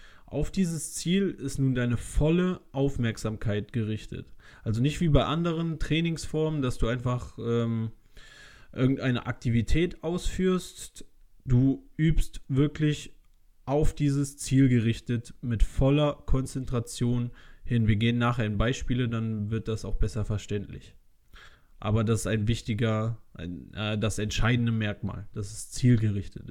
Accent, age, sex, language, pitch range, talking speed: German, 20-39, male, German, 110-145 Hz, 125 wpm